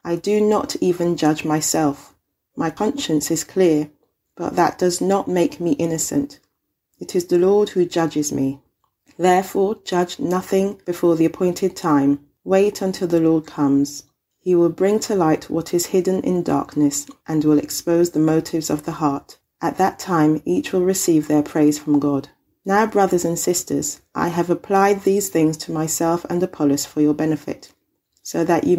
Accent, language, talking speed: British, English, 175 wpm